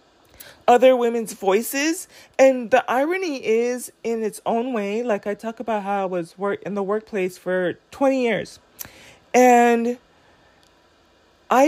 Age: 20-39